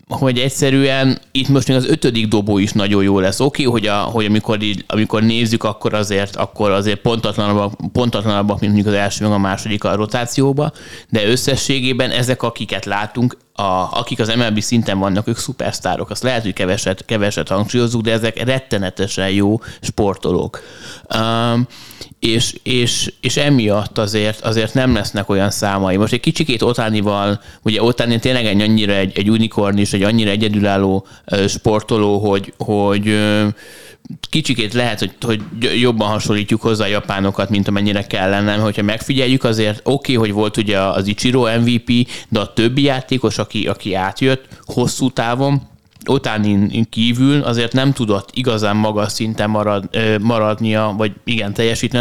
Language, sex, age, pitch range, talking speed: Hungarian, male, 20-39, 105-120 Hz, 155 wpm